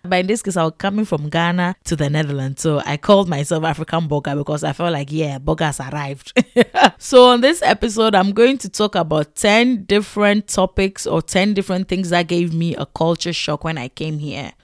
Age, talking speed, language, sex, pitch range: 20-39, 215 wpm, English, female, 150-190 Hz